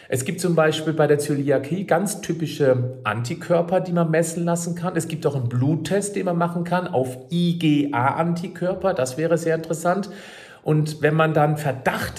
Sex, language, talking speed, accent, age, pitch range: male, German, 170 wpm, German, 40-59, 135-170 Hz